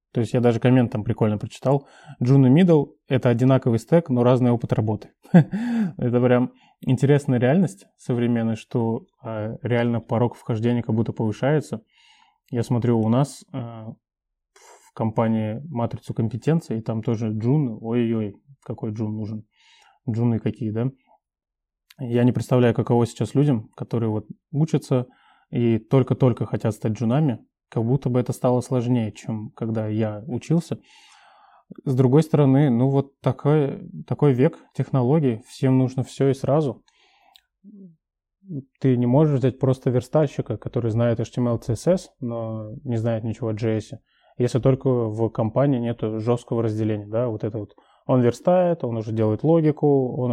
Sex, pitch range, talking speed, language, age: male, 115-140 Hz, 150 wpm, Russian, 20-39